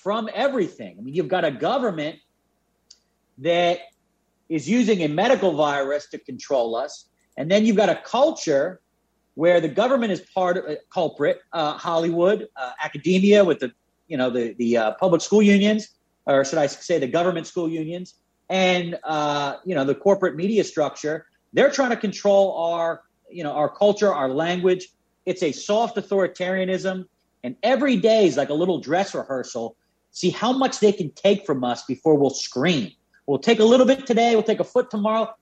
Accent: American